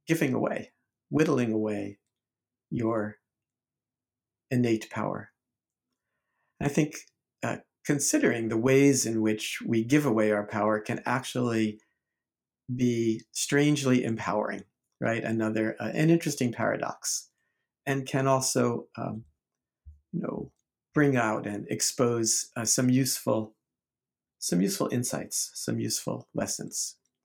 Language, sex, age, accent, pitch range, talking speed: English, male, 50-69, American, 110-130 Hz, 110 wpm